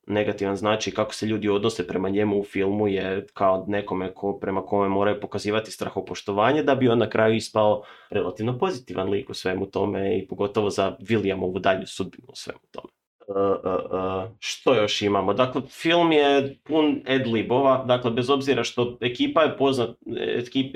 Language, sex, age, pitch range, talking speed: Croatian, male, 30-49, 100-120 Hz, 175 wpm